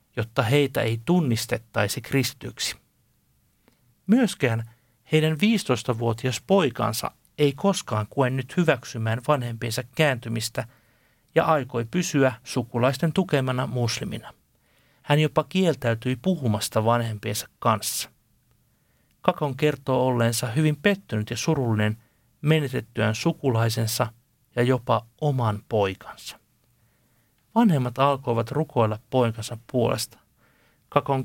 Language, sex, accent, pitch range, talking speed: Finnish, male, native, 115-145 Hz, 90 wpm